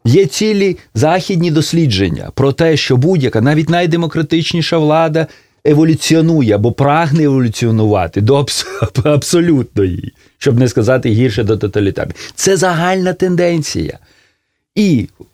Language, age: Russian, 30-49